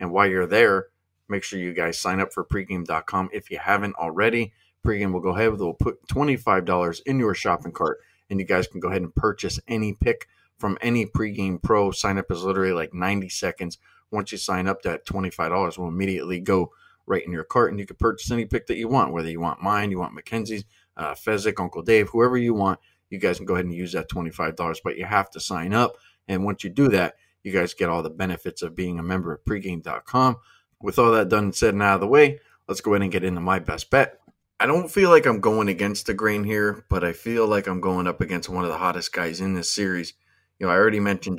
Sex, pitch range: male, 90-105 Hz